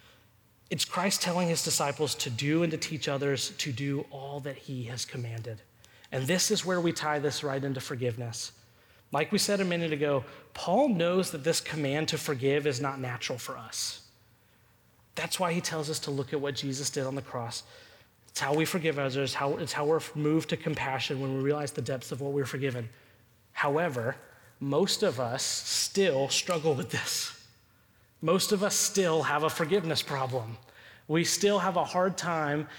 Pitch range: 120-160 Hz